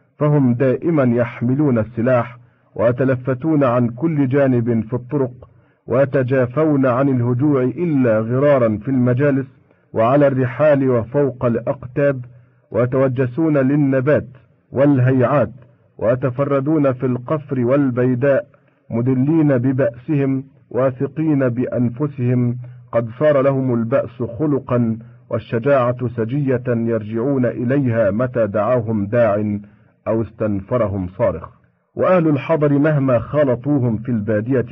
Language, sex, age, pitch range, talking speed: Arabic, male, 50-69, 120-140 Hz, 90 wpm